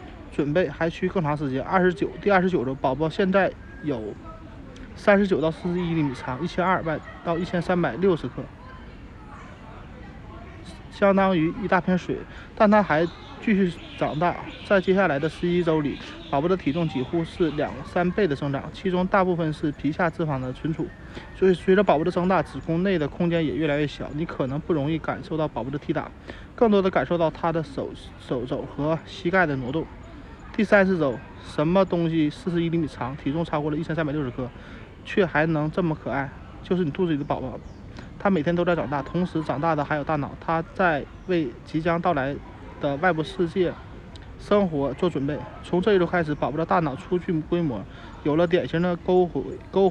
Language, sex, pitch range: Chinese, male, 140-180 Hz